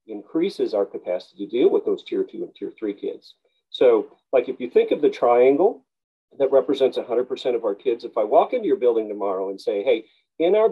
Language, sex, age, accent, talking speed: English, male, 40-59, American, 225 wpm